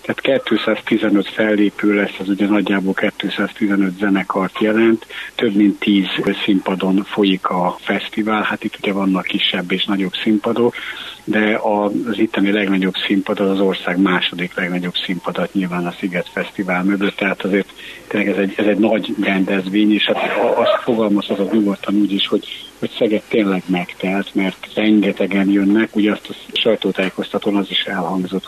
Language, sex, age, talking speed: Hungarian, male, 50-69, 155 wpm